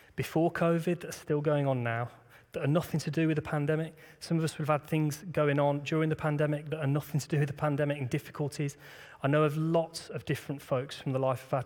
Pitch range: 135-155 Hz